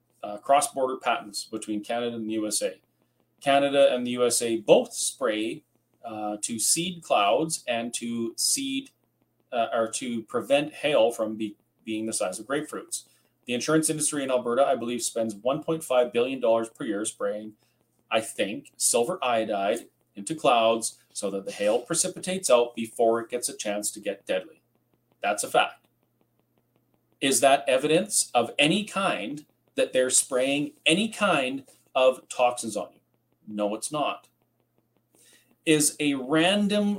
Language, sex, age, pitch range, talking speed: English, male, 30-49, 115-165 Hz, 145 wpm